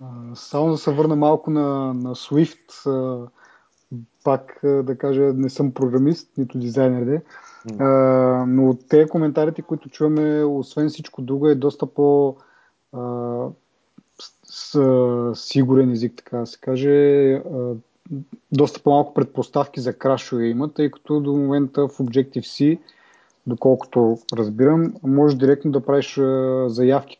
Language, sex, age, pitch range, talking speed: Bulgarian, male, 30-49, 125-145 Hz, 120 wpm